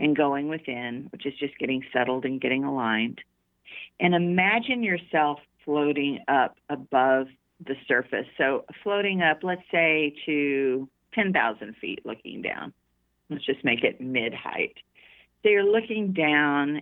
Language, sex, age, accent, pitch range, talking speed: English, female, 50-69, American, 130-170 Hz, 135 wpm